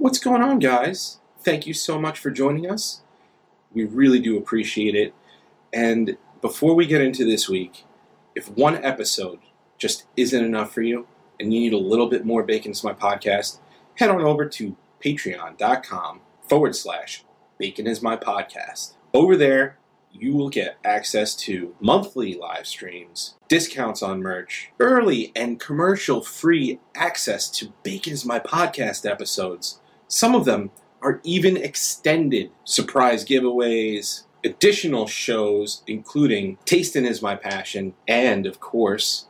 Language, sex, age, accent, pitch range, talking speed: English, male, 30-49, American, 110-155 Hz, 140 wpm